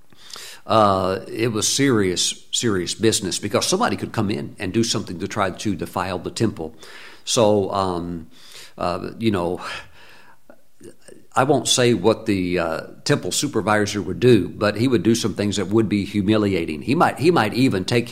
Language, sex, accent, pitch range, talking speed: English, male, American, 100-130 Hz, 170 wpm